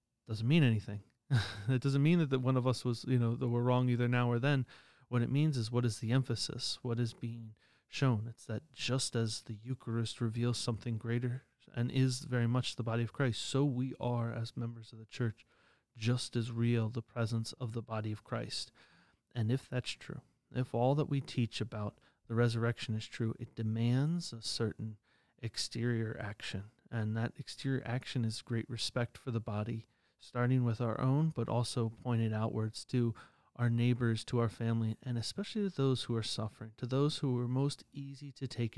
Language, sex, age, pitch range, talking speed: English, male, 30-49, 115-130 Hz, 195 wpm